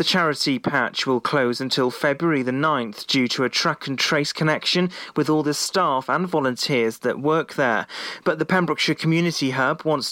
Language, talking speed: English, 185 wpm